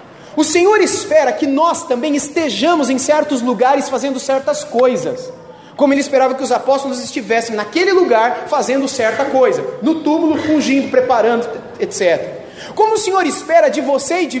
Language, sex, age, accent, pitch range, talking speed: Portuguese, male, 30-49, Brazilian, 265-335 Hz, 160 wpm